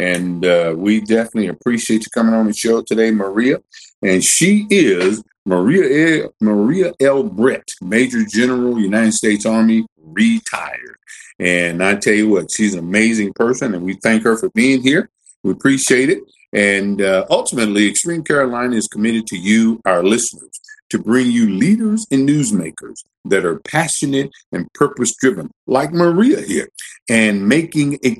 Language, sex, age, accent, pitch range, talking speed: English, male, 50-69, American, 105-160 Hz, 155 wpm